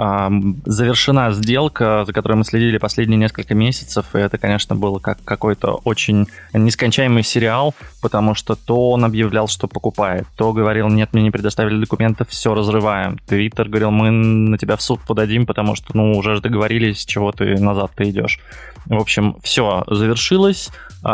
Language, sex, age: Russian, male, 20-39